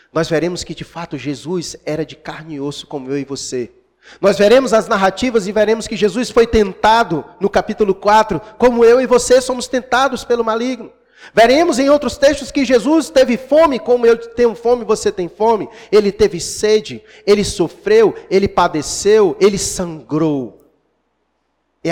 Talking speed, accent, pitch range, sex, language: 165 wpm, Brazilian, 145-220 Hz, male, Portuguese